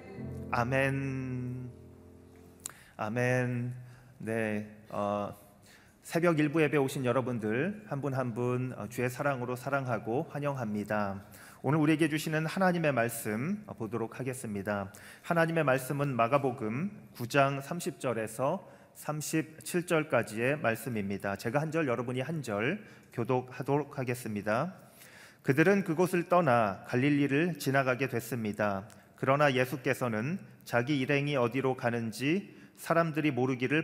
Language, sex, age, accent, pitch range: Korean, male, 40-59, native, 115-145 Hz